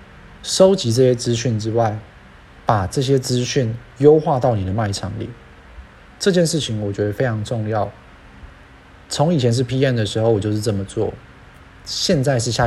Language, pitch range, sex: Chinese, 100-130 Hz, male